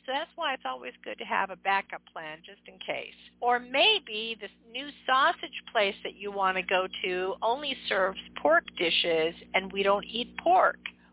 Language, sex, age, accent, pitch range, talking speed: English, female, 50-69, American, 195-275 Hz, 190 wpm